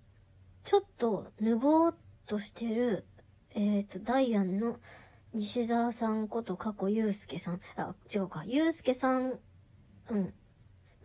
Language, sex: Japanese, male